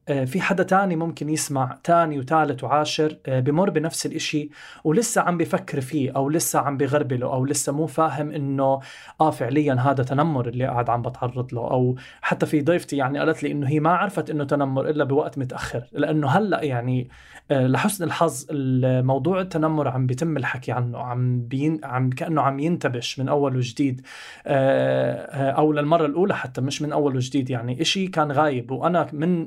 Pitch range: 130-160 Hz